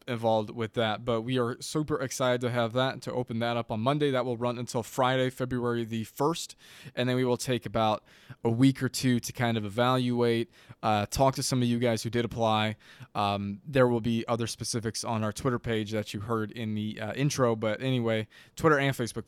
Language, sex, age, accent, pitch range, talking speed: English, male, 20-39, American, 110-130 Hz, 225 wpm